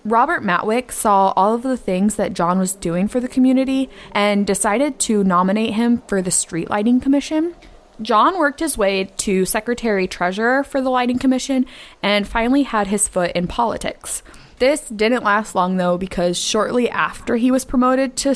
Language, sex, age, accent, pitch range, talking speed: English, female, 20-39, American, 185-255 Hz, 175 wpm